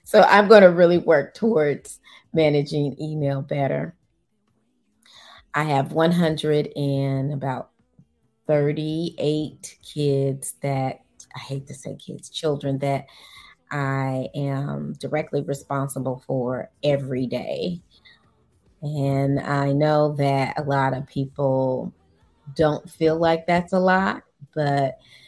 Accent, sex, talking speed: American, female, 110 wpm